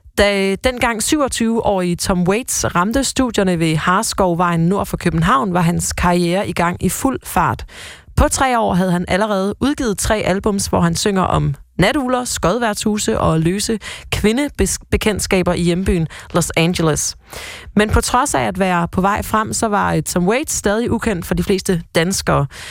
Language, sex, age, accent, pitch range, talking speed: Danish, female, 30-49, native, 170-220 Hz, 160 wpm